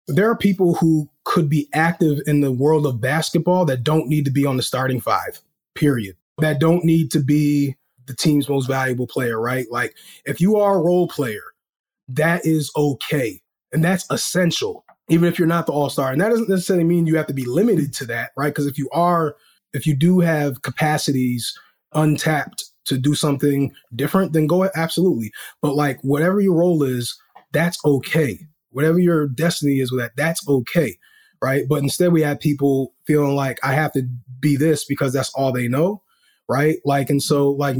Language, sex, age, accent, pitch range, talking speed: English, male, 30-49, American, 135-160 Hz, 195 wpm